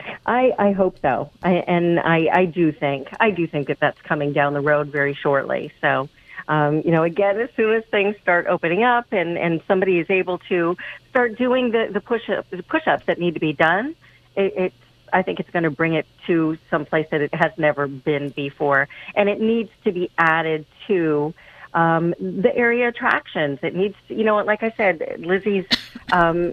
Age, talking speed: 40-59, 205 wpm